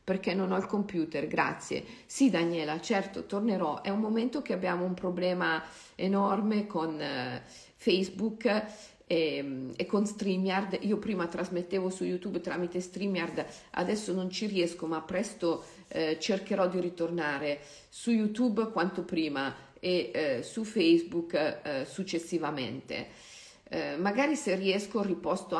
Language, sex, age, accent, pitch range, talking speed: Italian, female, 50-69, native, 170-200 Hz, 135 wpm